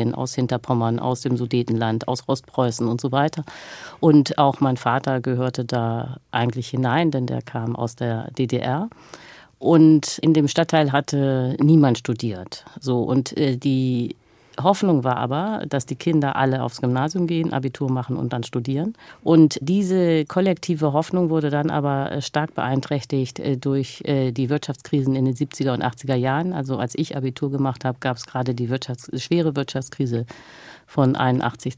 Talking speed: 155 wpm